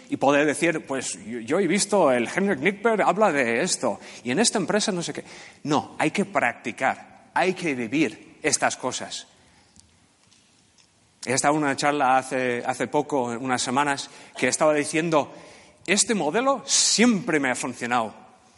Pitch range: 130-175 Hz